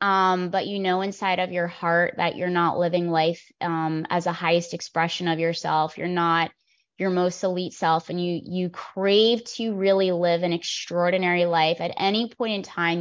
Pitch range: 175-200 Hz